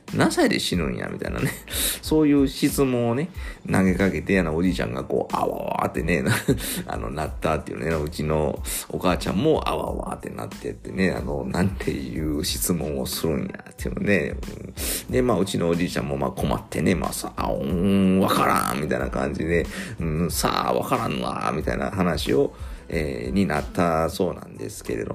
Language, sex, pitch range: Japanese, male, 75-105 Hz